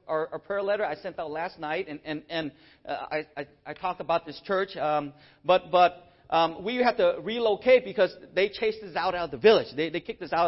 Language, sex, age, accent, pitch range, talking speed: English, male, 40-59, American, 170-230 Hz, 225 wpm